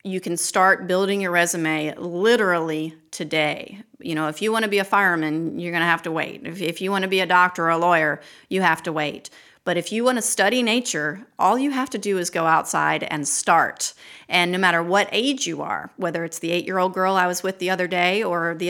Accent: American